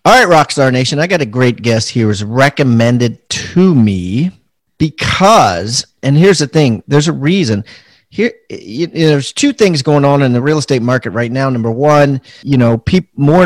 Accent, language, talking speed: American, English, 190 wpm